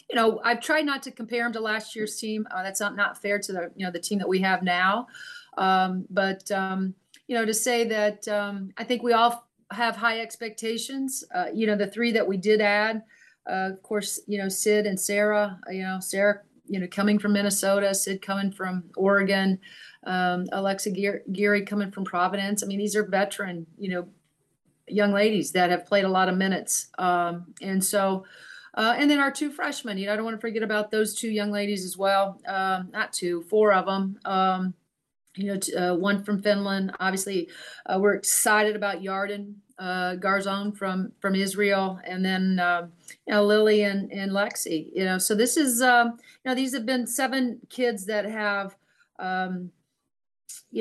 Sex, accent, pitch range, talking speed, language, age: female, American, 190-225 Hz, 195 wpm, English, 40-59